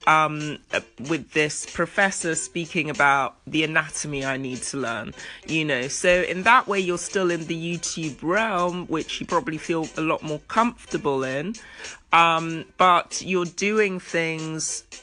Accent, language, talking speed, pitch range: British, English, 150 wpm, 160-195 Hz